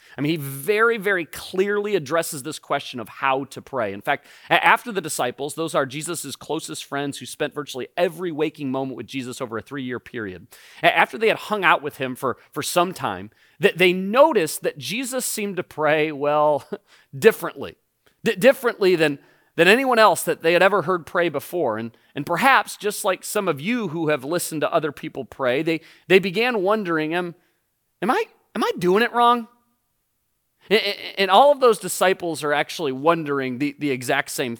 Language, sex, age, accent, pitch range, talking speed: English, male, 30-49, American, 145-205 Hz, 185 wpm